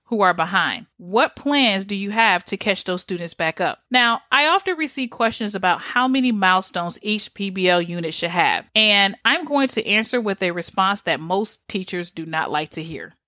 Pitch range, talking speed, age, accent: 190-260 Hz, 200 wpm, 40-59, American